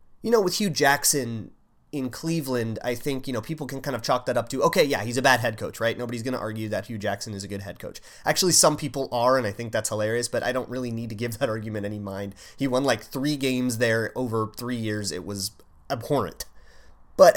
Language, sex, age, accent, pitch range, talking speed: English, male, 30-49, American, 115-150 Hz, 250 wpm